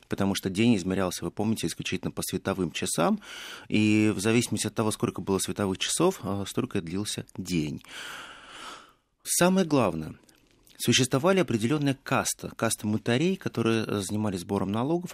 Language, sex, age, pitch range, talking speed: Russian, male, 30-49, 95-130 Hz, 135 wpm